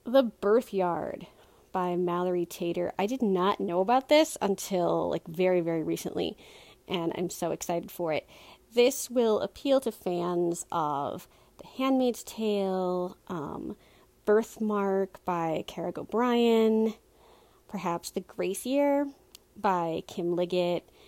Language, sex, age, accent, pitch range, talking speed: English, female, 30-49, American, 180-215 Hz, 120 wpm